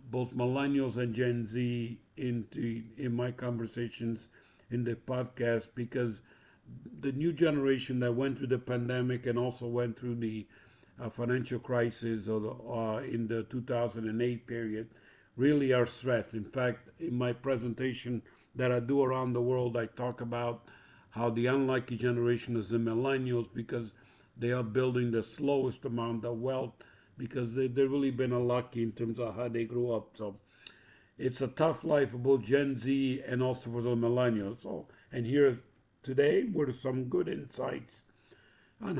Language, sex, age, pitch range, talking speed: English, male, 50-69, 115-130 Hz, 160 wpm